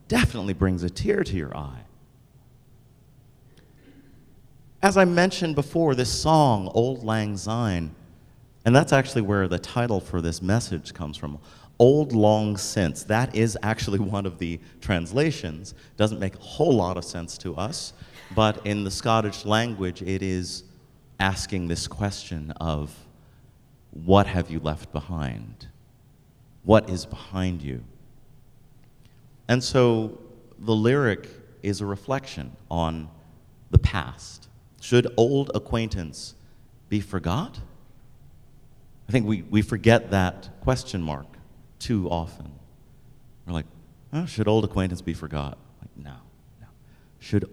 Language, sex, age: English, male, 30-49